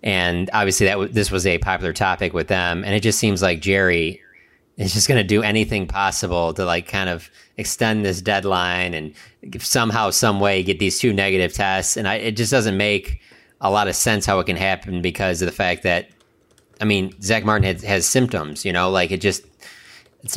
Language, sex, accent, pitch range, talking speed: English, male, American, 90-110 Hz, 205 wpm